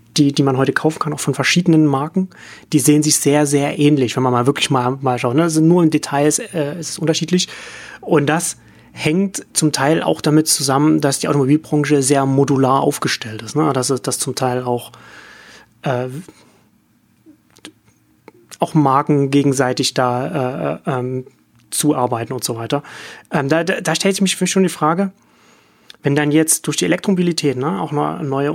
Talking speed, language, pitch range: 175 wpm, German, 125-155 Hz